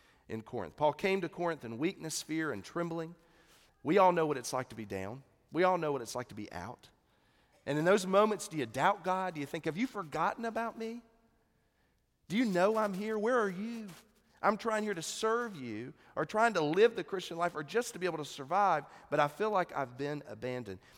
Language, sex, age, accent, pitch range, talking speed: English, male, 40-59, American, 115-170 Hz, 230 wpm